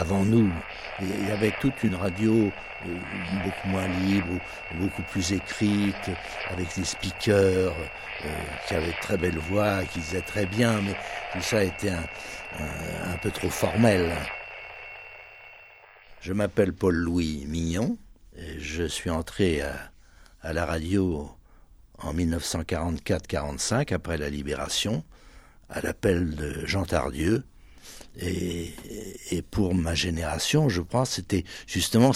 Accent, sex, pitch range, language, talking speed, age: French, male, 85-110 Hz, French, 130 wpm, 60-79